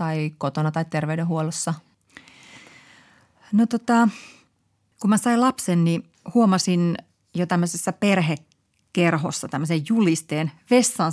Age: 30-49